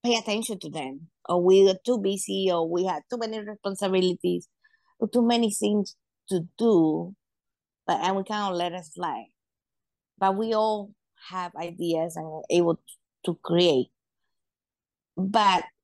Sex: female